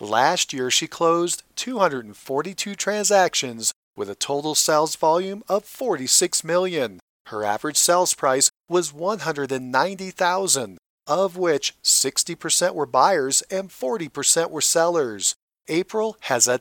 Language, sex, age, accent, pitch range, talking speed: English, male, 40-59, American, 145-195 Hz, 115 wpm